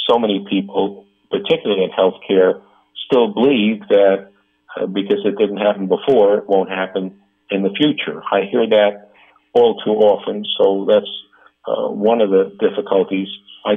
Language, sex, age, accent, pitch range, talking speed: English, male, 50-69, American, 95-110 Hz, 155 wpm